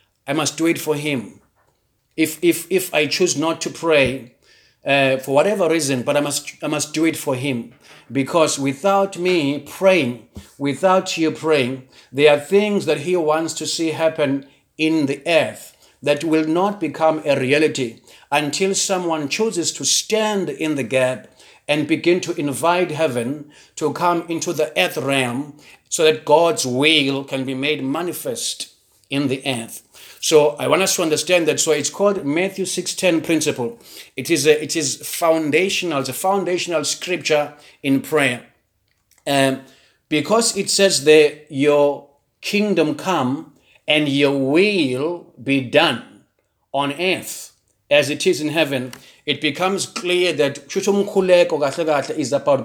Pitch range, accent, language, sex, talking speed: 140-175 Hz, South African, English, male, 155 wpm